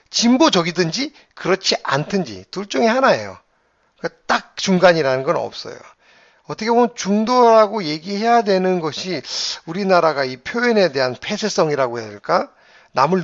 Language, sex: Korean, male